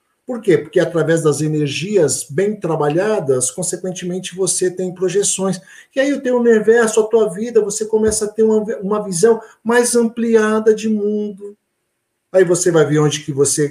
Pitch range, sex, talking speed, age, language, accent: 135-220 Hz, male, 165 wpm, 50-69, Portuguese, Brazilian